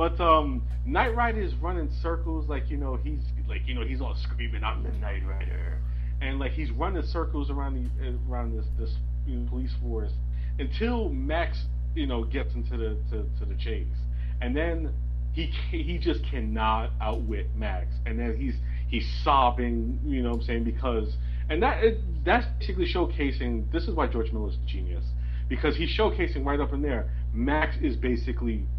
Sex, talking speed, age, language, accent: male, 180 wpm, 30-49, English, American